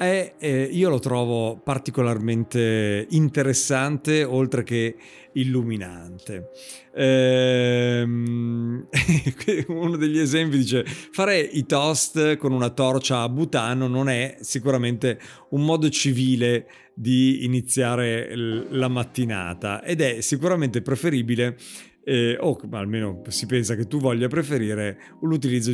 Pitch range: 115-145 Hz